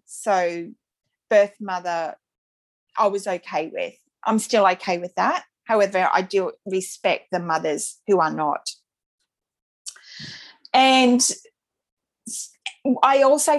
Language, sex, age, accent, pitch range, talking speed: English, female, 30-49, Australian, 185-235 Hz, 105 wpm